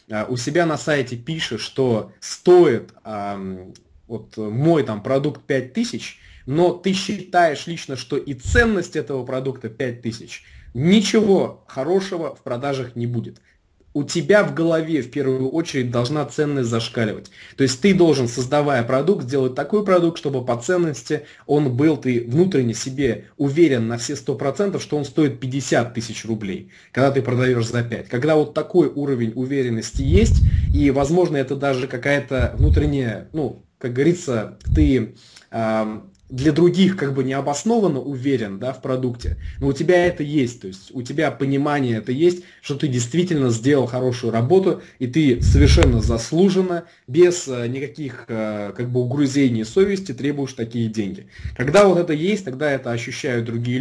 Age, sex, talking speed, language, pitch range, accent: 20-39, male, 155 wpm, Russian, 120-150 Hz, native